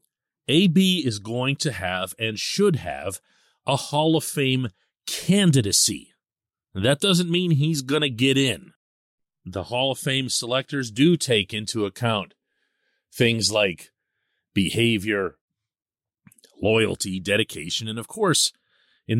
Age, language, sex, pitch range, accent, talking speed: 40-59, English, male, 100-135 Hz, American, 120 wpm